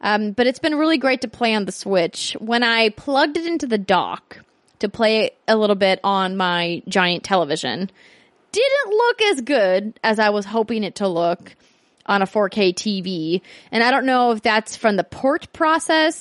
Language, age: English, 20-39